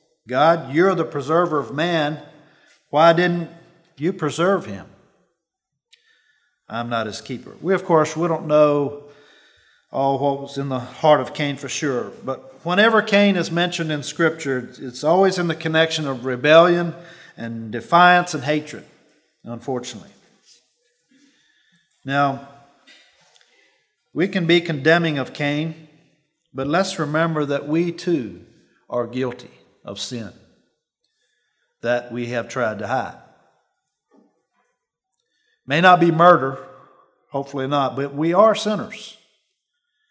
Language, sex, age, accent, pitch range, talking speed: English, male, 50-69, American, 135-175 Hz, 125 wpm